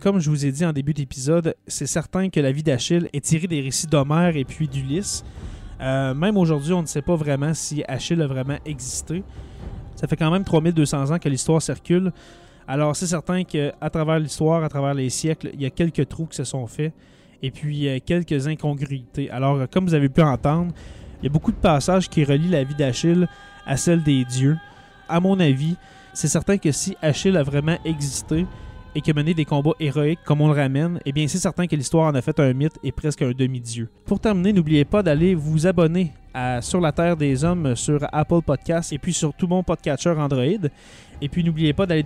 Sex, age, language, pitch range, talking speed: male, 20-39, French, 140-170 Hz, 215 wpm